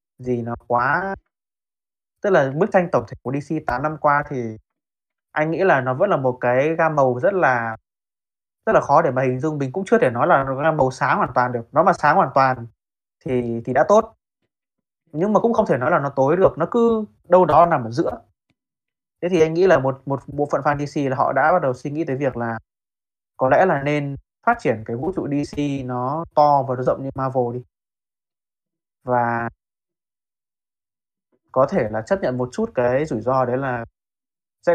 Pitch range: 125-160 Hz